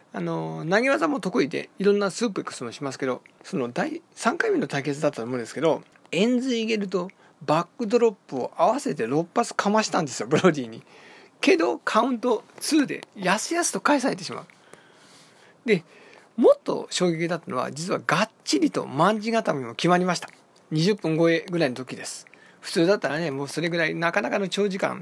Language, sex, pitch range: Japanese, male, 155-230 Hz